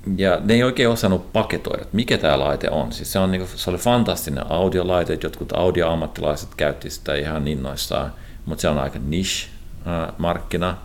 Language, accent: Finnish, native